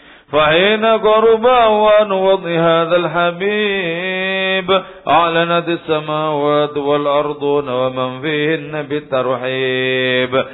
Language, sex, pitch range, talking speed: English, male, 135-165 Hz, 70 wpm